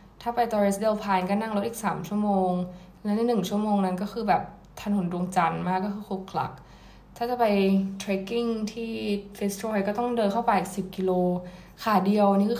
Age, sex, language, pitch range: 10-29, female, Thai, 185-215 Hz